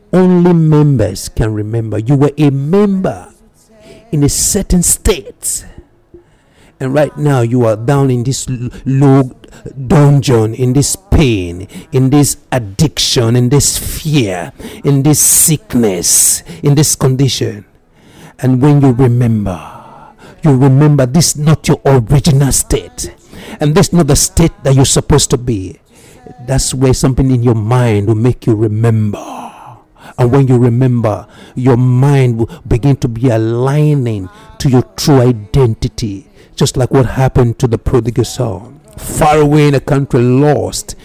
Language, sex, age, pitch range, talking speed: English, male, 60-79, 115-145 Hz, 145 wpm